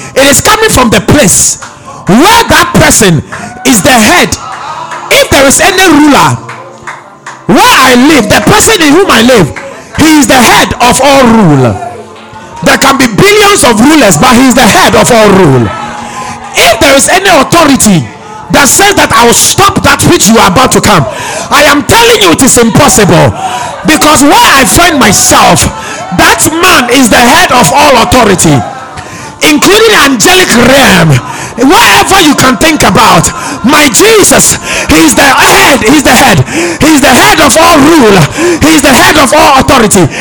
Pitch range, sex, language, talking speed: 230-315 Hz, male, English, 170 wpm